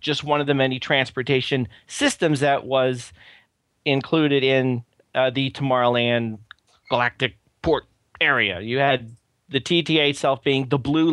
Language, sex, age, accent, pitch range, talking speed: English, male, 40-59, American, 115-145 Hz, 135 wpm